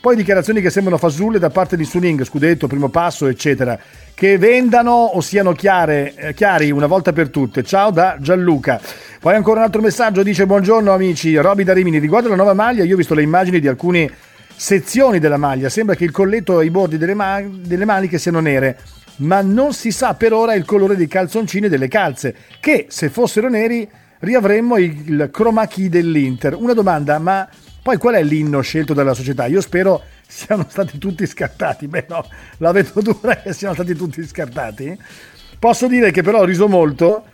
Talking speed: 190 wpm